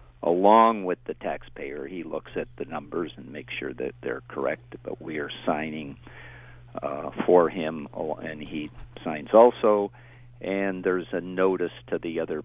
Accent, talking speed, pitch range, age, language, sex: American, 160 wpm, 85-110 Hz, 50-69, English, male